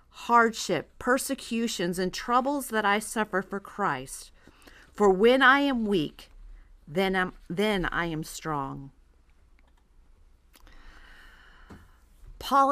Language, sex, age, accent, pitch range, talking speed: English, female, 40-59, American, 190-275 Hz, 95 wpm